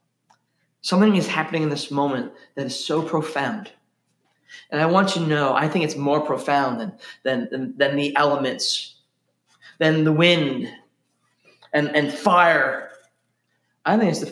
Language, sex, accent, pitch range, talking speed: English, male, American, 150-180 Hz, 145 wpm